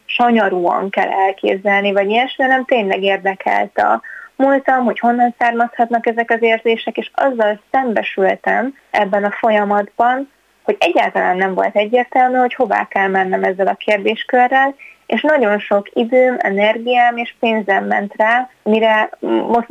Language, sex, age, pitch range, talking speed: Hungarian, female, 20-39, 195-230 Hz, 135 wpm